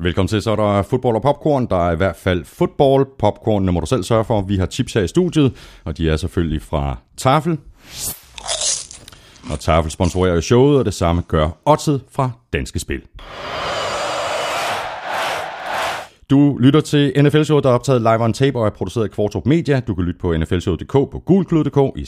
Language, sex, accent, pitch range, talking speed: Danish, male, native, 85-125 Hz, 180 wpm